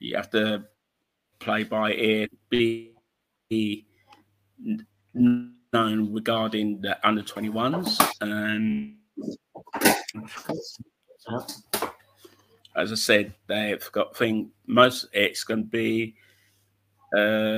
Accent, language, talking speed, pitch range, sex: British, English, 85 wpm, 105-120 Hz, male